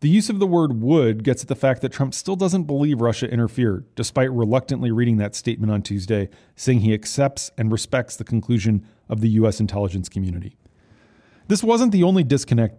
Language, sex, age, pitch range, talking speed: English, male, 40-59, 110-145 Hz, 190 wpm